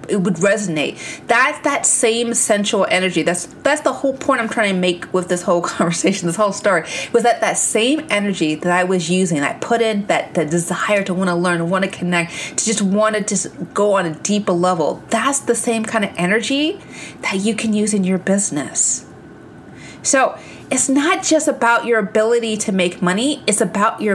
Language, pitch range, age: English, 185-235 Hz, 30-49